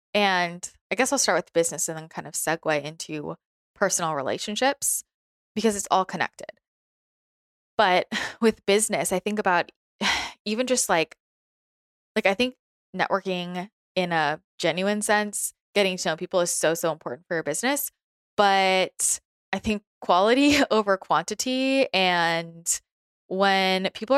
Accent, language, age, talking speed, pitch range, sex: American, English, 20-39, 140 wpm, 175-225 Hz, female